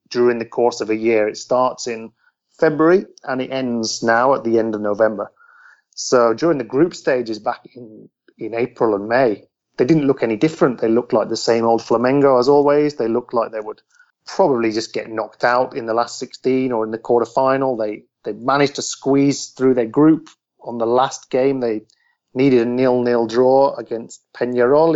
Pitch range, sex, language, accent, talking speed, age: 110-135 Hz, male, English, British, 195 wpm, 30-49